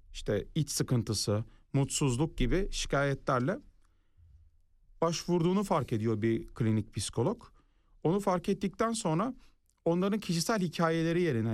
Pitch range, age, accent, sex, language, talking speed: 120-175 Hz, 40-59, native, male, Turkish, 105 wpm